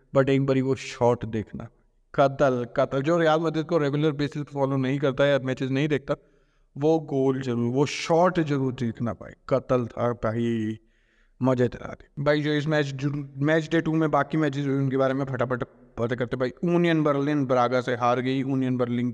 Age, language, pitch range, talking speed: 20-39, Hindi, 130-150 Hz, 180 wpm